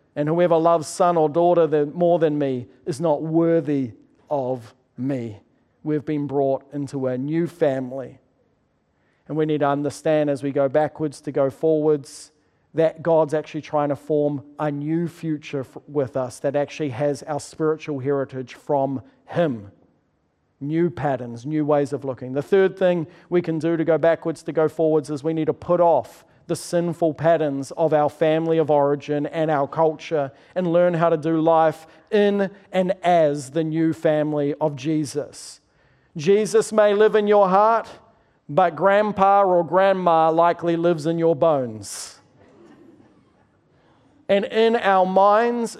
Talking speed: 155 wpm